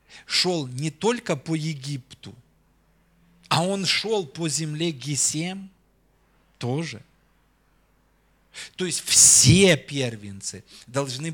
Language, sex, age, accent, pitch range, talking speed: Russian, male, 40-59, native, 110-150 Hz, 90 wpm